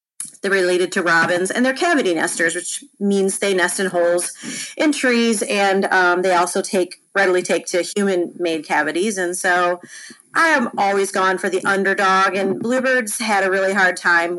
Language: English